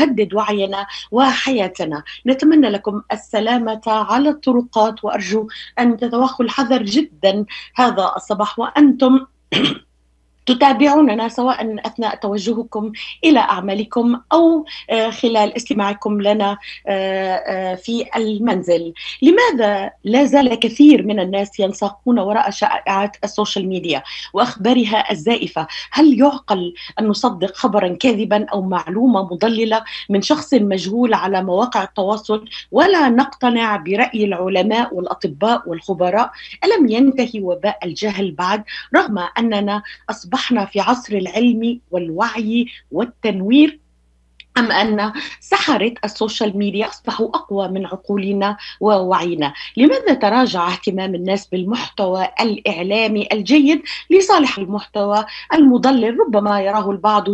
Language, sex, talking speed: Arabic, female, 105 wpm